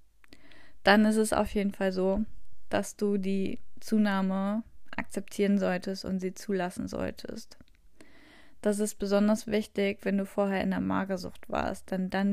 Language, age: German, 20-39